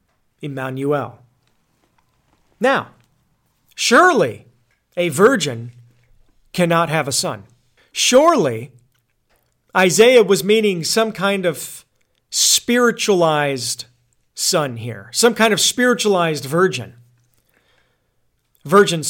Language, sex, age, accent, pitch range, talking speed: English, male, 40-59, American, 140-210 Hz, 80 wpm